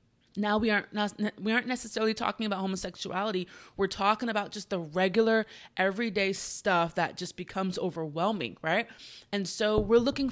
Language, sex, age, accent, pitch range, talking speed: English, female, 20-39, American, 175-220 Hz, 150 wpm